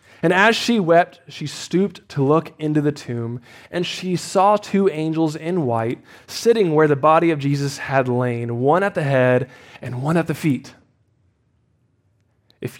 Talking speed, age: 170 wpm, 20-39